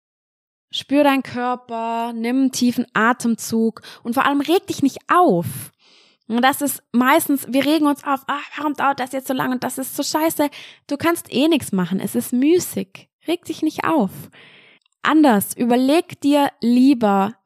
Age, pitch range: 20-39, 215-285 Hz